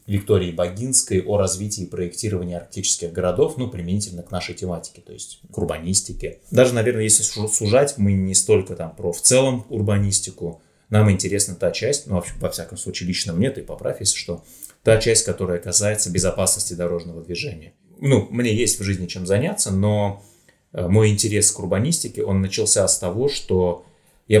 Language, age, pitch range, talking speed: Russian, 30-49, 90-105 Hz, 170 wpm